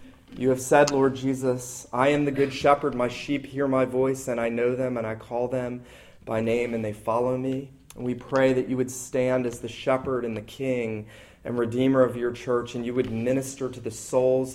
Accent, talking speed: American, 225 wpm